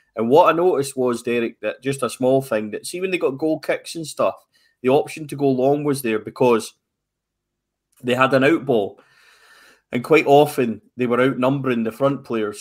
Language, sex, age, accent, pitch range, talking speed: English, male, 20-39, British, 115-140 Hz, 200 wpm